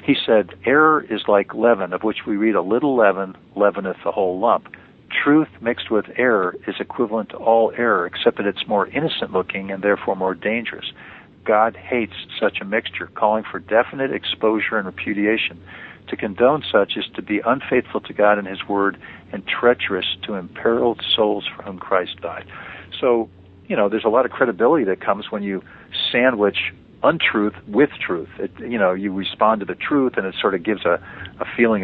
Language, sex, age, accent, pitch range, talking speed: English, male, 50-69, American, 95-105 Hz, 185 wpm